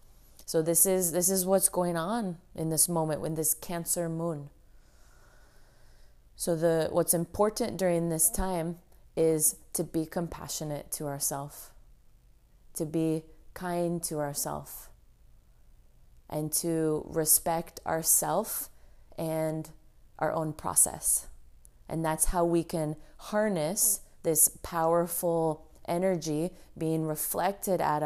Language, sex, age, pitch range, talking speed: English, female, 20-39, 155-175 Hz, 115 wpm